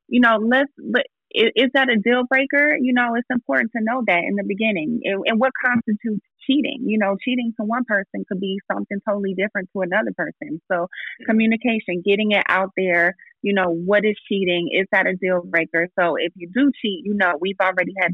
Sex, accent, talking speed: female, American, 210 wpm